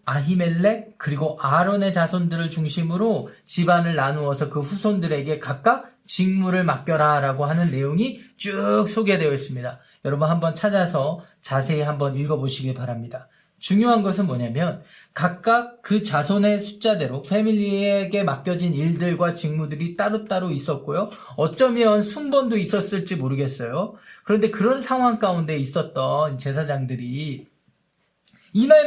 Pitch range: 150-200 Hz